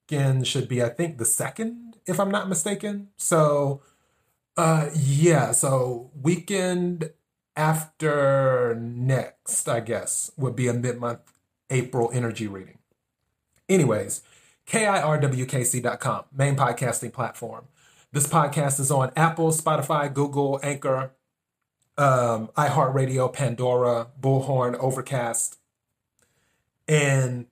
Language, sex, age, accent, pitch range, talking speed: English, male, 30-49, American, 125-160 Hz, 100 wpm